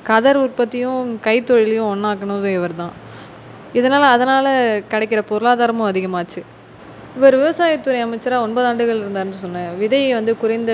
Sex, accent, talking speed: female, native, 115 wpm